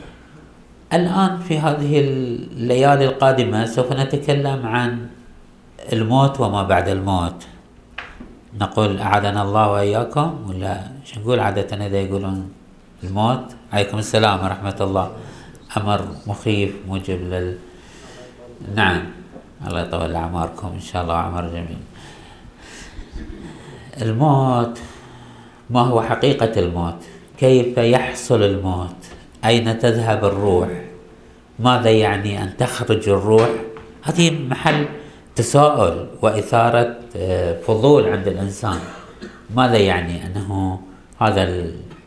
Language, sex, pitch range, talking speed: Arabic, male, 95-125 Hz, 95 wpm